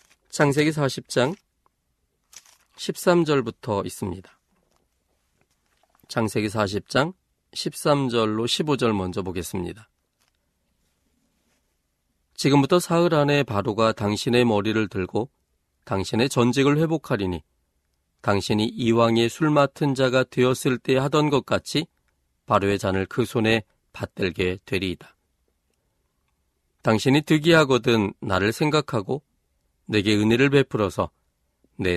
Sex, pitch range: male, 85-130 Hz